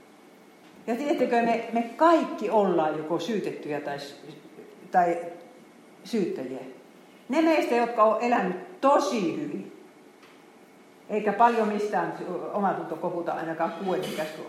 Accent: native